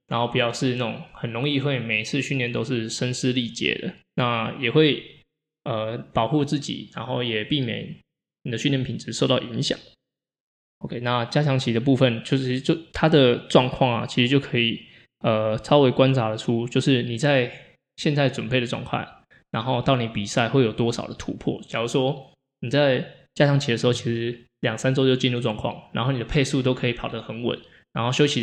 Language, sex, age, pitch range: Chinese, male, 20-39, 115-140 Hz